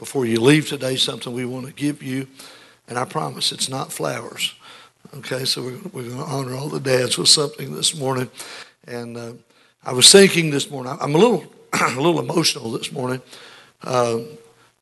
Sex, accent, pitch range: male, American, 125-145 Hz